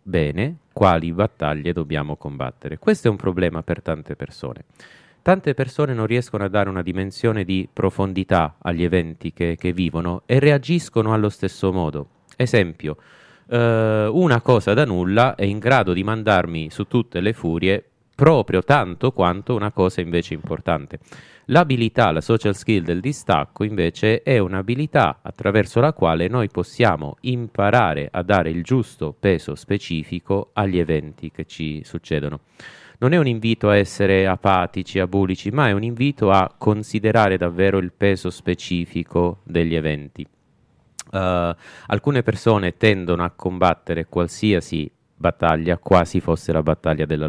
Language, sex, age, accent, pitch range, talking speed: Italian, male, 30-49, native, 85-110 Hz, 140 wpm